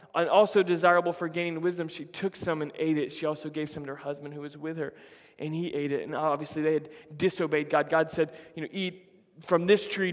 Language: English